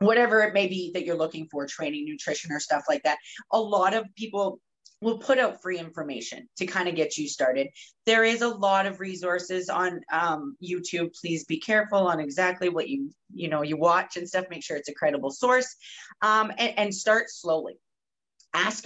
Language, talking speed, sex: English, 200 wpm, female